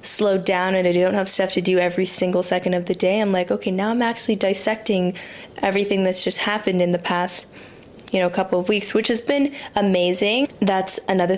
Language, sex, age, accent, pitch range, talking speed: English, female, 10-29, American, 185-215 Hz, 215 wpm